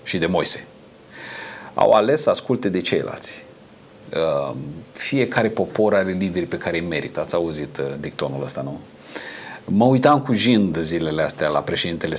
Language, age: Romanian, 40-59